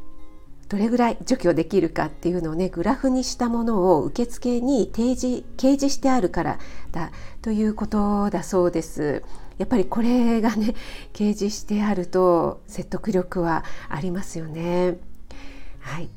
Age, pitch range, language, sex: 50-69, 170-225 Hz, Japanese, female